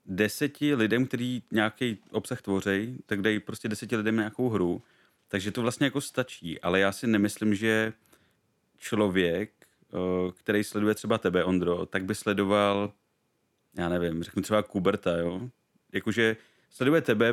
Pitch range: 95-115 Hz